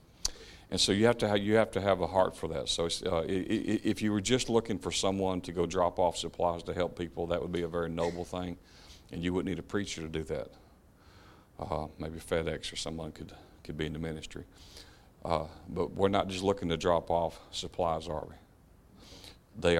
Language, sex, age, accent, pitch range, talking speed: English, male, 50-69, American, 80-95 Hz, 215 wpm